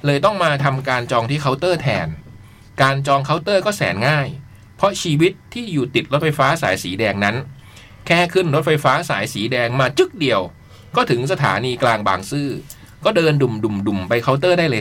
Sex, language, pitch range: male, Thai, 120-170 Hz